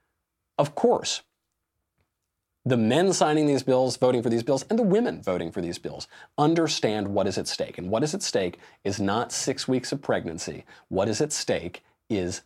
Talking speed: 190 wpm